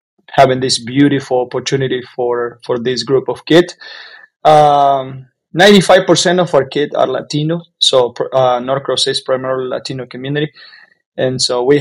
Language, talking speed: English, 140 wpm